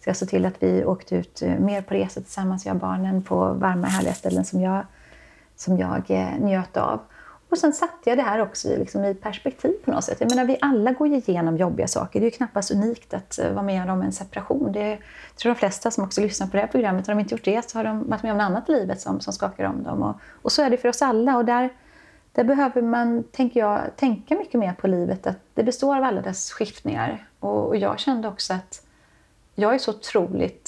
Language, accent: Swedish, native